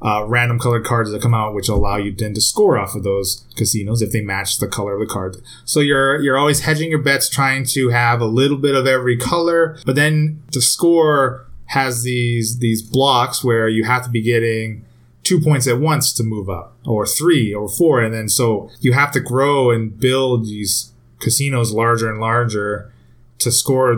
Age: 30-49